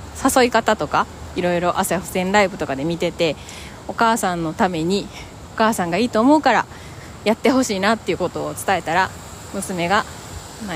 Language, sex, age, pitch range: Japanese, female, 20-39, 175-245 Hz